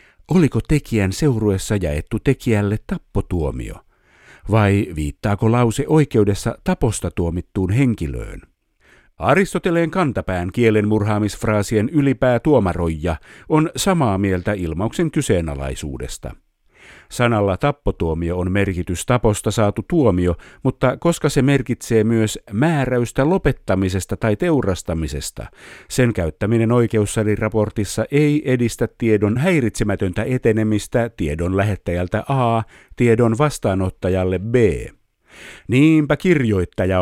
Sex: male